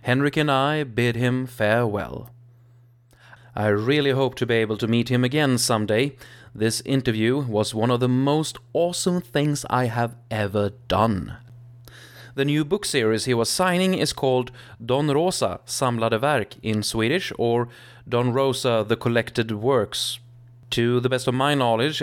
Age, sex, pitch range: 30-49, male, 110-125 Hz